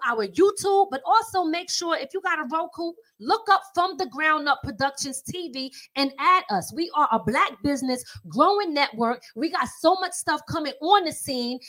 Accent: American